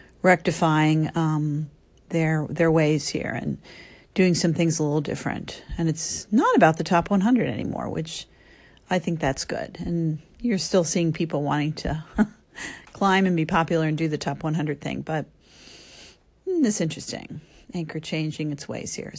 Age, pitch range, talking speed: 40-59, 160-200 Hz, 165 wpm